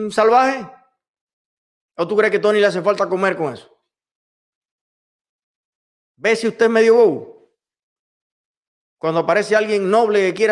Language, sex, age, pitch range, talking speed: Spanish, male, 30-49, 155-230 Hz, 135 wpm